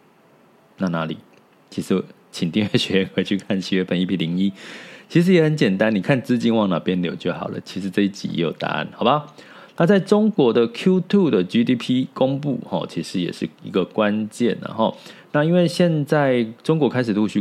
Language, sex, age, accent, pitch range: Chinese, male, 20-39, native, 90-120 Hz